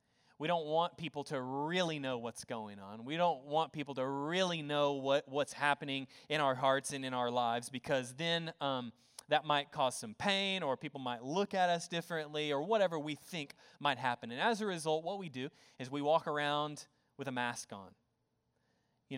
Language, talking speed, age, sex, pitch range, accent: English, 195 wpm, 20-39, male, 130-165 Hz, American